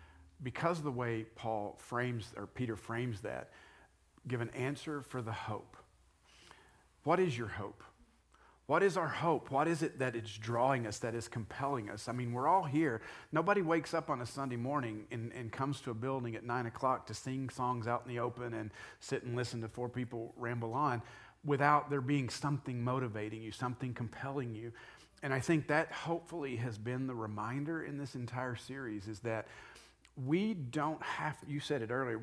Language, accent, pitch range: English, American, 120-150 Hz